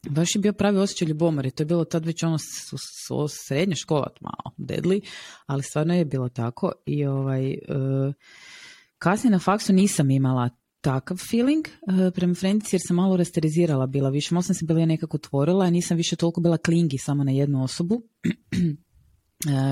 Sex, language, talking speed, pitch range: female, Croatian, 175 wpm, 135-175 Hz